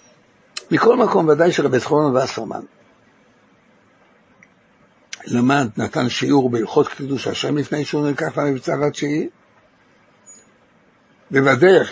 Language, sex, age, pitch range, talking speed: Hebrew, male, 60-79, 125-175 Hz, 90 wpm